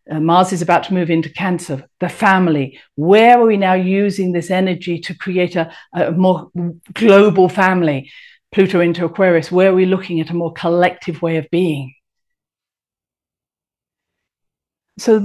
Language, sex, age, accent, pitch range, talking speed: English, female, 50-69, British, 175-225 Hz, 155 wpm